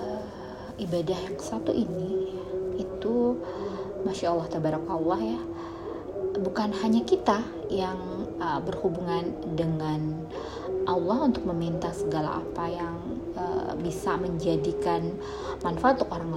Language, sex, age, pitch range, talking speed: Indonesian, female, 20-39, 165-205 Hz, 105 wpm